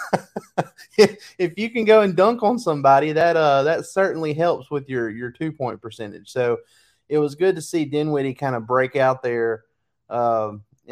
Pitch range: 115-140 Hz